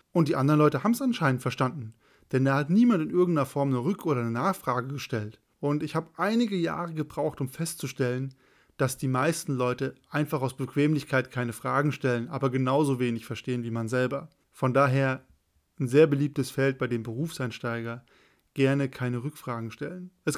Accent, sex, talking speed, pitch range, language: German, male, 175 wpm, 125-155 Hz, German